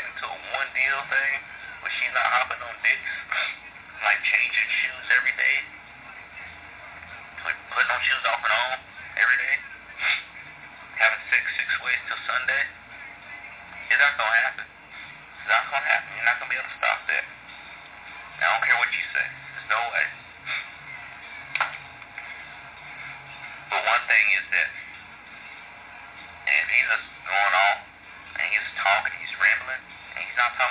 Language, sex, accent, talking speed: English, male, American, 150 wpm